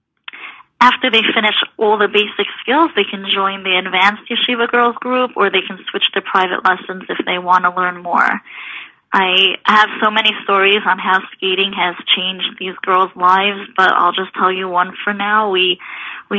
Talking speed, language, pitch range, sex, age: 185 wpm, English, 180-210 Hz, female, 20-39